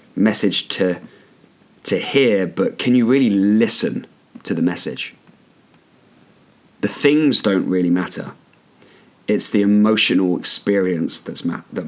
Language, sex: English, male